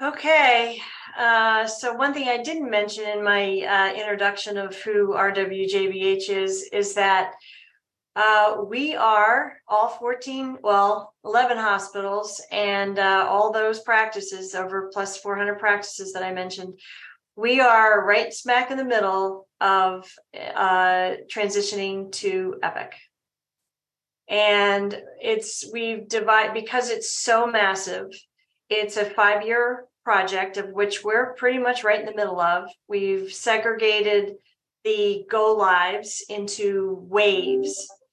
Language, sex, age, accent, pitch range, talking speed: English, female, 40-59, American, 200-245 Hz, 125 wpm